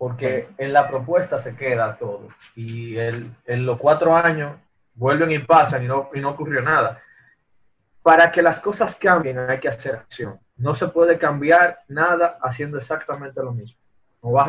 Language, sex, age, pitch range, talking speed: Spanish, male, 20-39, 120-160 Hz, 170 wpm